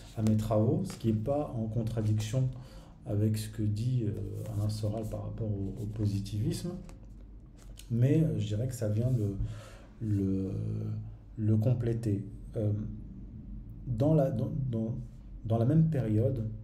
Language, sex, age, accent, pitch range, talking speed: French, male, 40-59, French, 105-125 Hz, 145 wpm